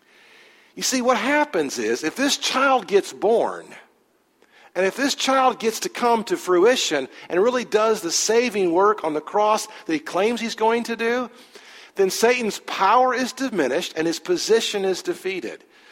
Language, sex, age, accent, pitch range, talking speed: English, male, 50-69, American, 190-265 Hz, 170 wpm